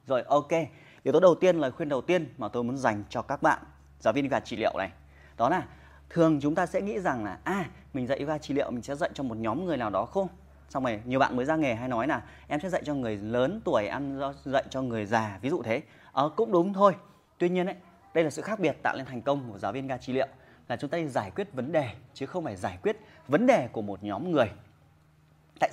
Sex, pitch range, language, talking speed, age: male, 120-160 Hz, Vietnamese, 270 wpm, 20-39